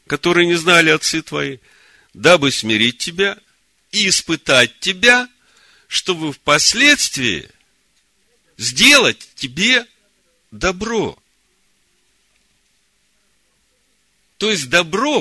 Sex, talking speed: male, 75 wpm